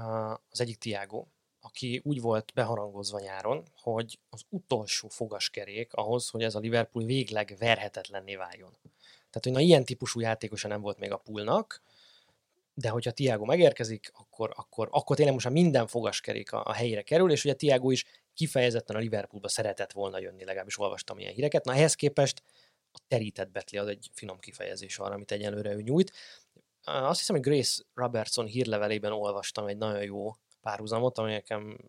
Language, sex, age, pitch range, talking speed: Hungarian, male, 20-39, 105-130 Hz, 165 wpm